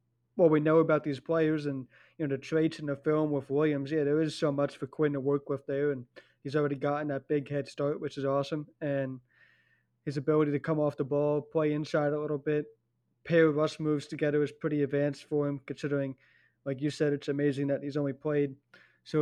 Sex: male